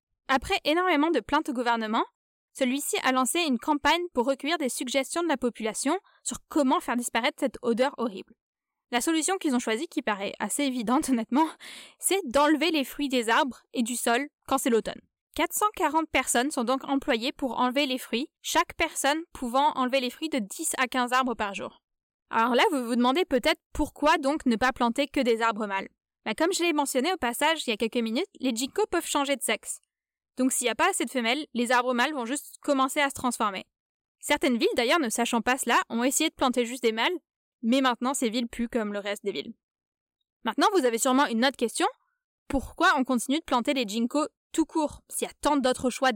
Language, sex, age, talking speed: French, female, 10-29, 215 wpm